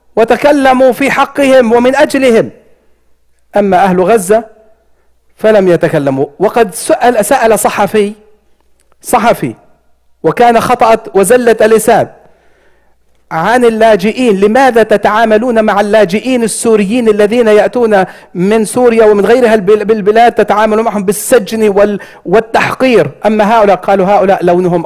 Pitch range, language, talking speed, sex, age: 195-235 Hz, English, 100 wpm, male, 50-69